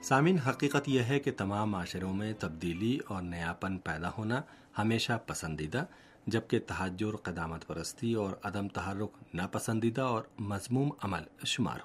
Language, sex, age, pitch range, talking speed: Urdu, male, 40-59, 95-120 Hz, 135 wpm